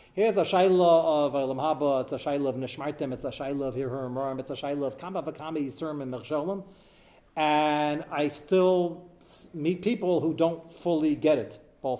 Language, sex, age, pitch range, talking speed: English, male, 40-59, 145-185 Hz, 180 wpm